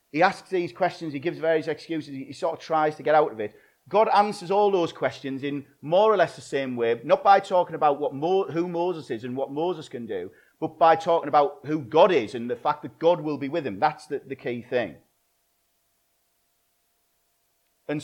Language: English